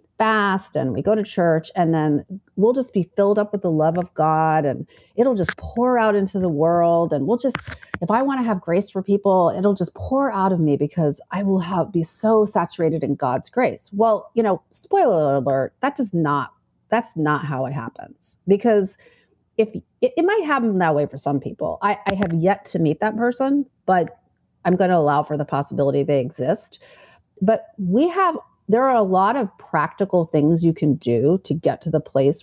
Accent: American